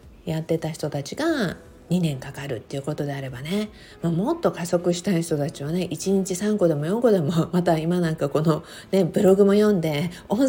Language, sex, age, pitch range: Japanese, female, 50-69, 145-200 Hz